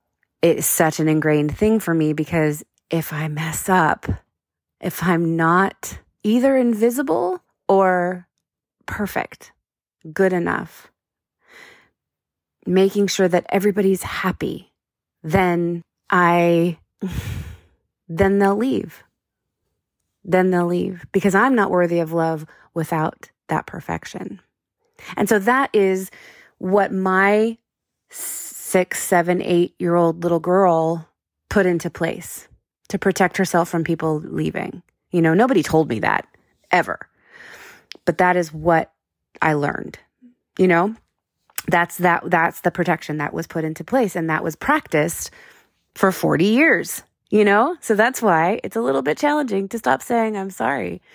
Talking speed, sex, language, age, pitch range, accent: 130 wpm, female, English, 20-39, 165-210 Hz, American